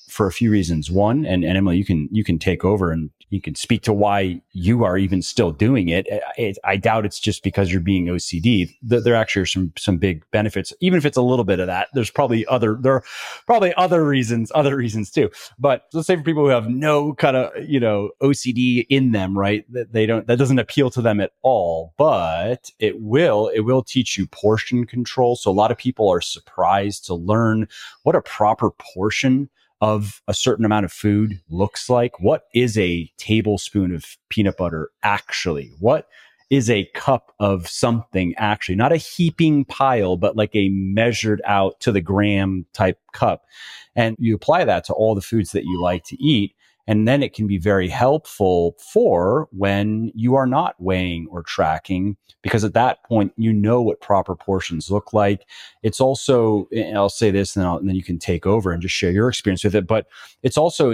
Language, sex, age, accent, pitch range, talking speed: English, male, 30-49, American, 95-120 Hz, 205 wpm